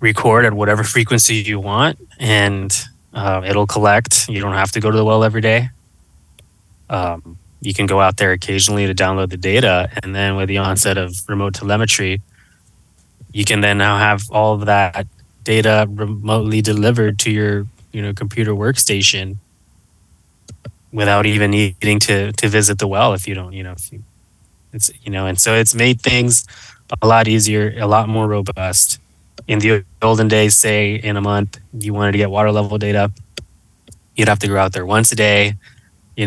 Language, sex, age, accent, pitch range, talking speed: English, male, 20-39, American, 95-110 Hz, 185 wpm